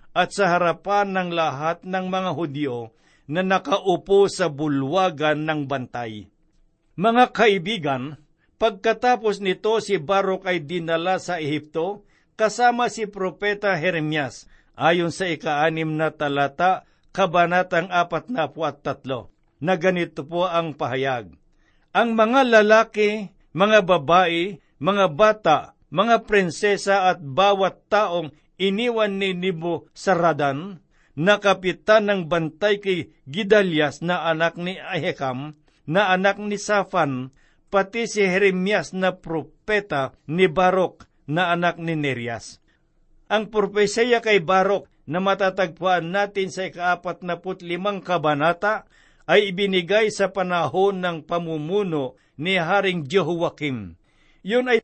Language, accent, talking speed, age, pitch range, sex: Filipino, native, 115 wpm, 50-69, 160-200 Hz, male